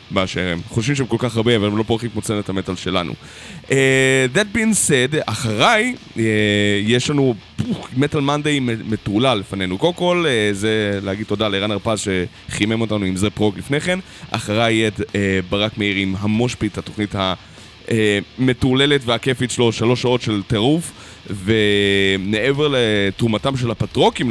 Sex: male